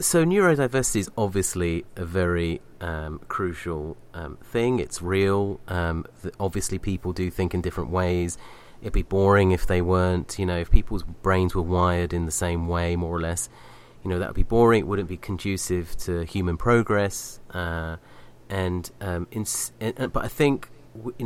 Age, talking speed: 30-49, 180 wpm